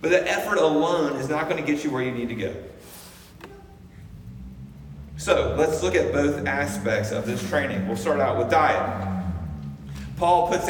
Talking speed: 175 wpm